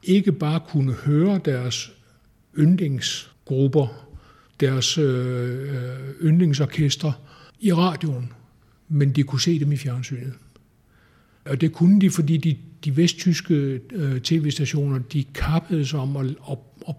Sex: male